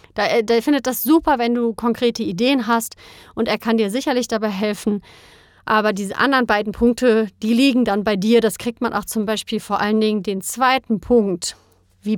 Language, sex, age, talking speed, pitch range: German, female, 30-49, 190 wpm, 200-245 Hz